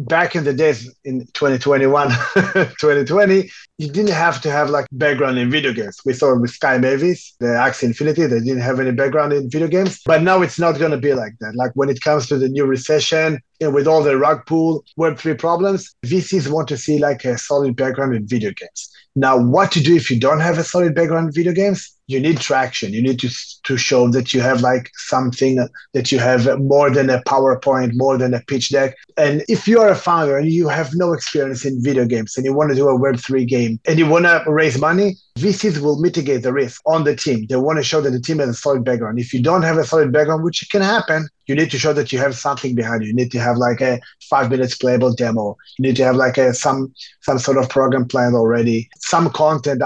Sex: male